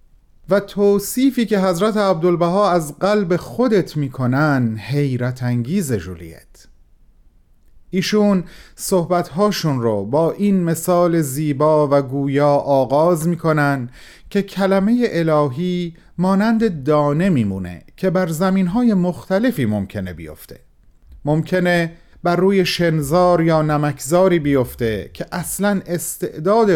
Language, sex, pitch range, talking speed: Persian, male, 120-185 Hz, 100 wpm